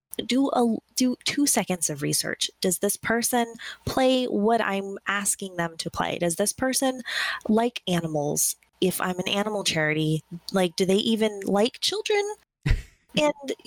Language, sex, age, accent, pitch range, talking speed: English, female, 20-39, American, 175-235 Hz, 150 wpm